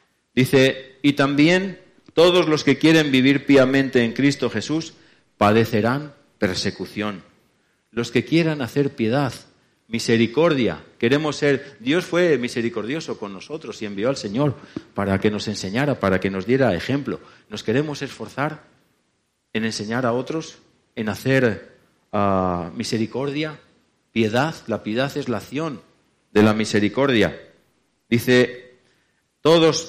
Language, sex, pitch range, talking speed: Spanish, male, 115-155 Hz, 120 wpm